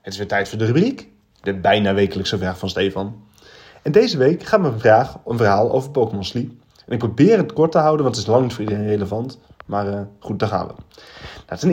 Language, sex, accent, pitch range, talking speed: Dutch, male, Dutch, 105-140 Hz, 235 wpm